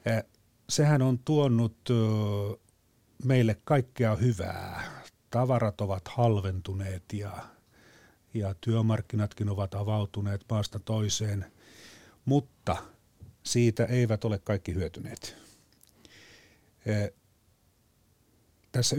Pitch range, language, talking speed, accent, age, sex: 100-115 Hz, Finnish, 75 wpm, native, 40-59, male